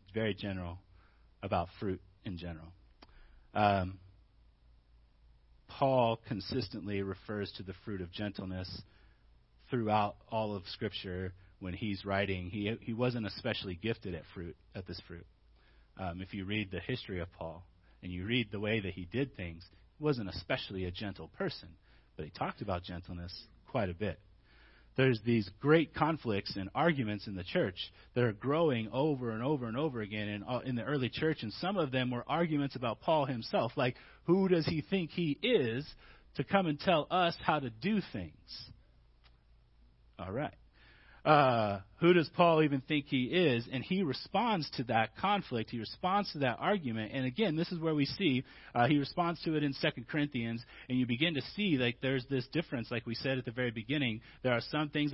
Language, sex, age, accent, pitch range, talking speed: English, male, 30-49, American, 100-140 Hz, 180 wpm